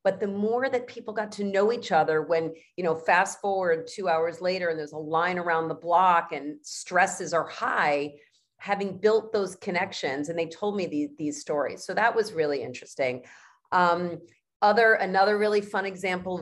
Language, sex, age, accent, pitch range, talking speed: English, female, 40-59, American, 155-190 Hz, 185 wpm